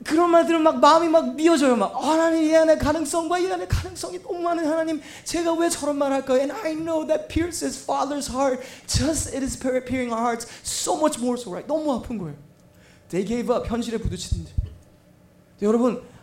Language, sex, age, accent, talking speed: English, male, 20-39, Korean, 185 wpm